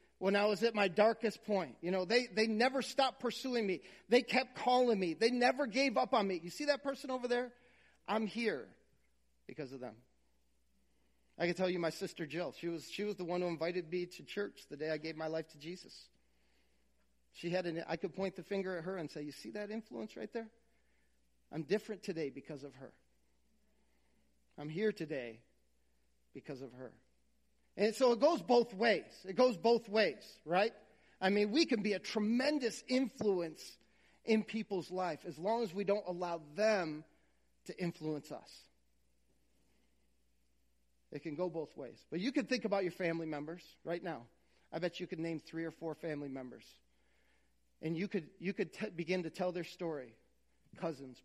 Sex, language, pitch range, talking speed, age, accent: male, English, 130-210 Hz, 185 wpm, 40-59, American